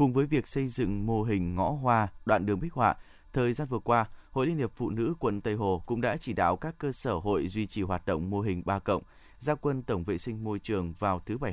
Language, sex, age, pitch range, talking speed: Vietnamese, male, 20-39, 95-125 Hz, 265 wpm